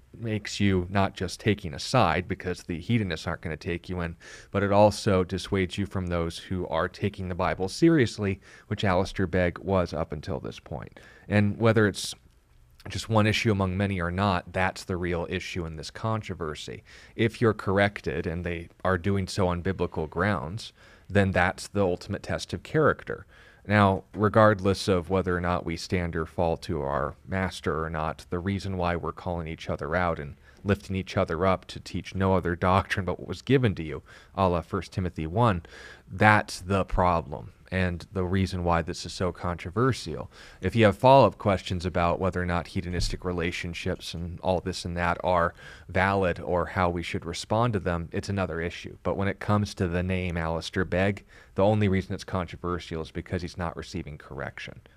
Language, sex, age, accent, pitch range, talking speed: English, male, 30-49, American, 85-100 Hz, 190 wpm